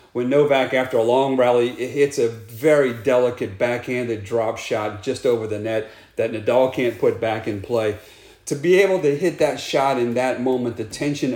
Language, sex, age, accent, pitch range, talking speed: English, male, 40-59, American, 110-135 Hz, 195 wpm